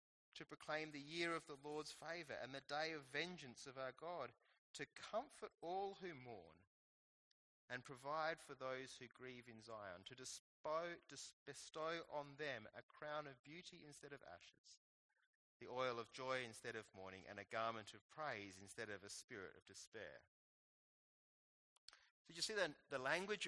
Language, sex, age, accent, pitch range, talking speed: English, male, 30-49, Australian, 125-170 Hz, 165 wpm